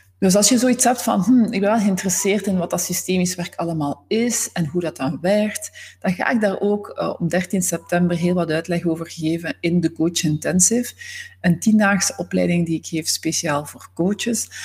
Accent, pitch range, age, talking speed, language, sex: Dutch, 145-180 Hz, 40-59, 205 wpm, Dutch, female